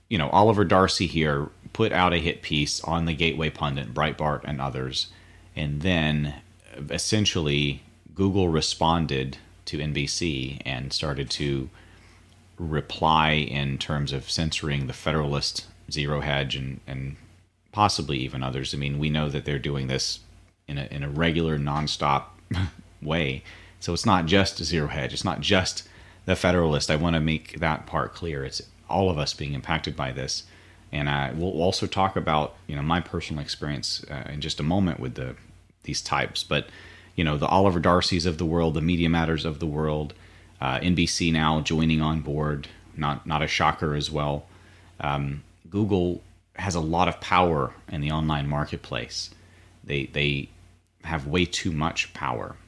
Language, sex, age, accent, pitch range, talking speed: English, male, 30-49, American, 75-90 Hz, 165 wpm